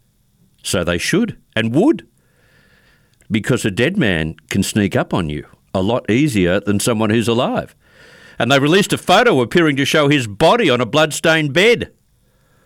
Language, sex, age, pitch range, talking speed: English, male, 60-79, 95-130 Hz, 165 wpm